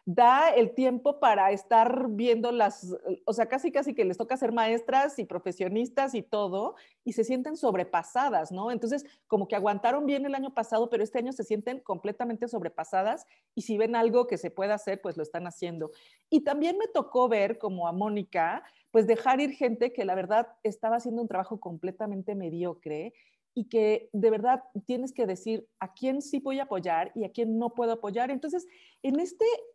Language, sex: Spanish, female